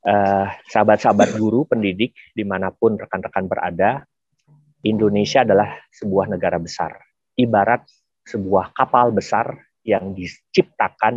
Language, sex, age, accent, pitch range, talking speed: Indonesian, male, 40-59, native, 90-115 Hz, 95 wpm